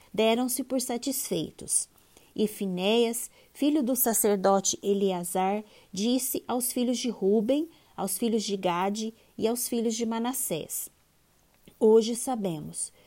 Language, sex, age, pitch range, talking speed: Portuguese, female, 20-39, 195-240 Hz, 115 wpm